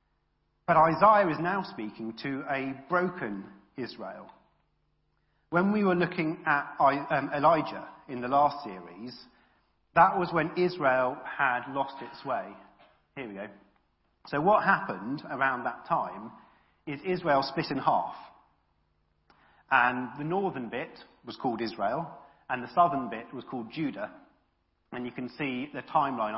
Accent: British